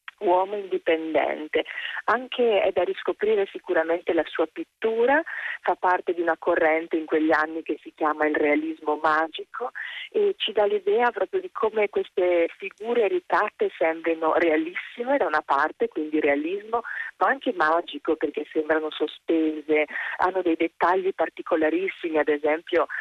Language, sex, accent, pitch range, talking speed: Italian, female, native, 150-210 Hz, 140 wpm